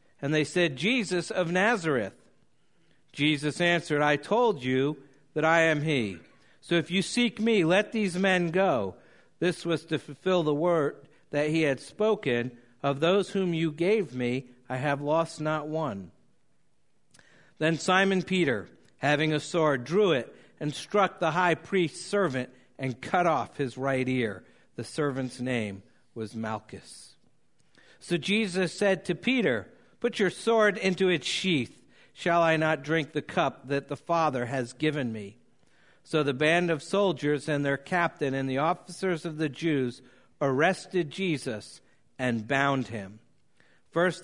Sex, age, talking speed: male, 60-79, 155 wpm